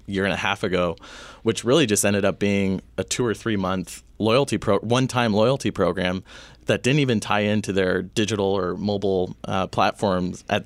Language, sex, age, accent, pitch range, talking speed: English, male, 20-39, American, 95-110 Hz, 190 wpm